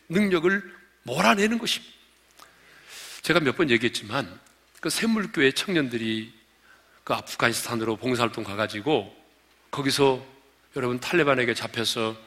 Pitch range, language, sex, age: 110-170 Hz, Korean, male, 40-59